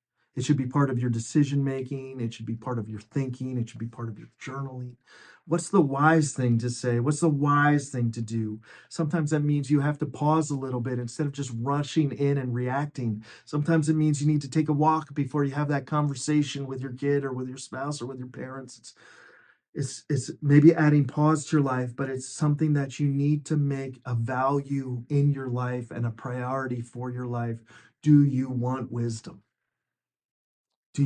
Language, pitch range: English, 125-155 Hz